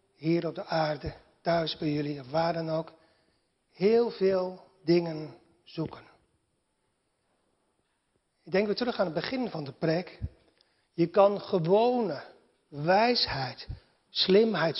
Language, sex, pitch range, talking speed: Dutch, male, 160-230 Hz, 120 wpm